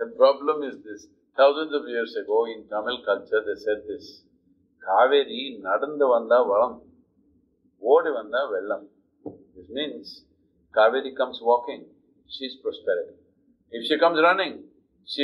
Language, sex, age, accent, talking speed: Hindi, male, 50-69, native, 140 wpm